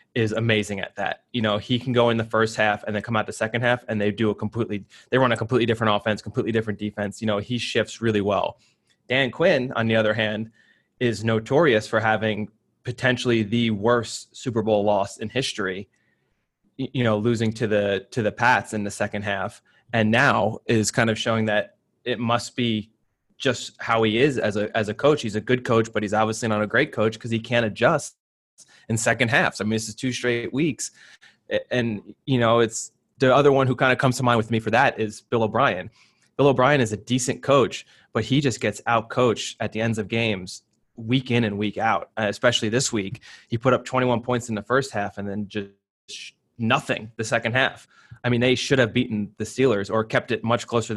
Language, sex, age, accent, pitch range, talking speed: English, male, 20-39, American, 105-125 Hz, 220 wpm